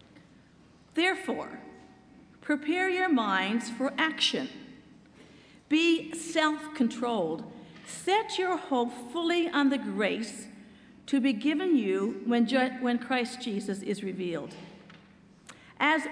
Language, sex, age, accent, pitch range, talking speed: English, female, 50-69, American, 230-295 Hz, 95 wpm